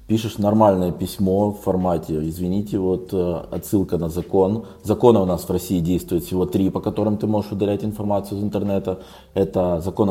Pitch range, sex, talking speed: 90-105 Hz, male, 165 wpm